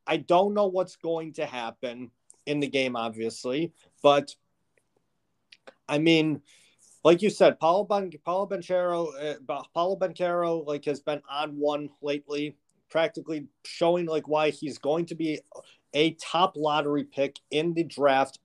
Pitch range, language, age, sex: 145-170 Hz, English, 30-49, male